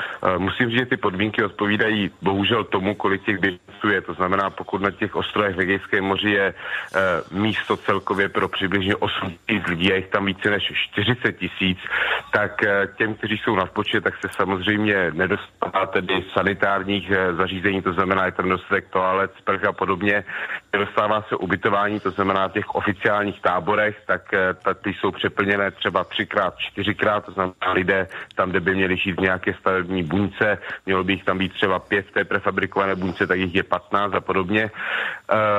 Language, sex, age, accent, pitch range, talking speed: Czech, male, 30-49, native, 95-105 Hz, 165 wpm